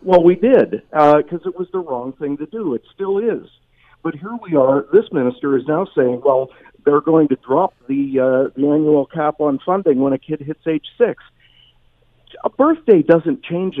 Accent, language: American, English